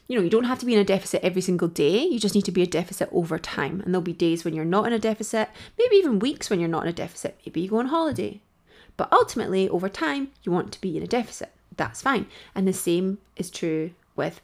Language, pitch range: English, 175-225 Hz